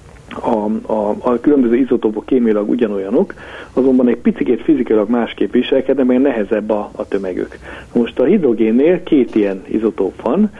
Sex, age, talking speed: male, 60-79, 140 wpm